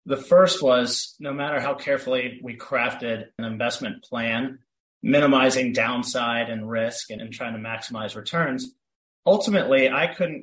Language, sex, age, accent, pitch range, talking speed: English, male, 30-49, American, 115-140 Hz, 145 wpm